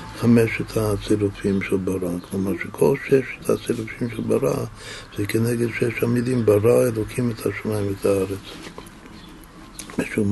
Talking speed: 120 wpm